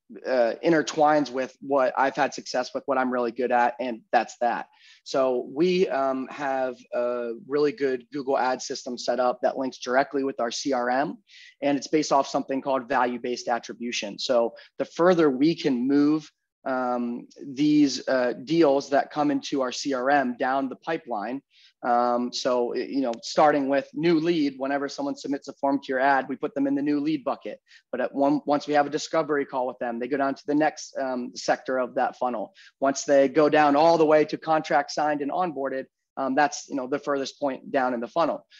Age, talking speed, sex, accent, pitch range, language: 30-49, 195 wpm, male, American, 130-155 Hz, English